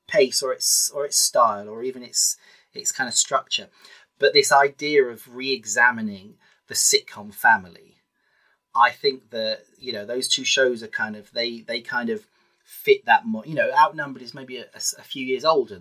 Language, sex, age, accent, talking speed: English, male, 30-49, British, 190 wpm